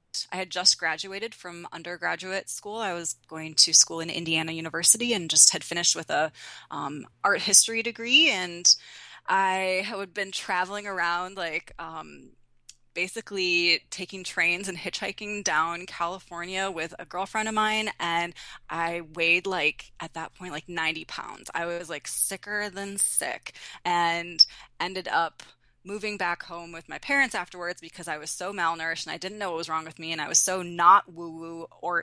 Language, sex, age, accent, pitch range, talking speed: English, female, 20-39, American, 165-195 Hz, 175 wpm